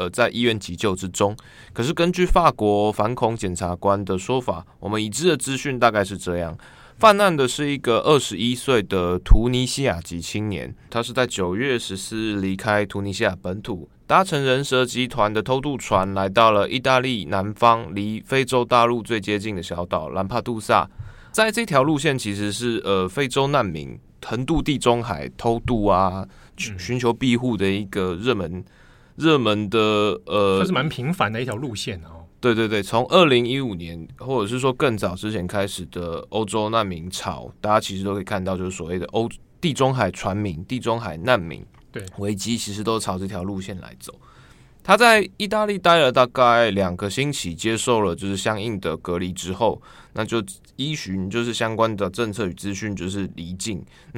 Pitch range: 95-125 Hz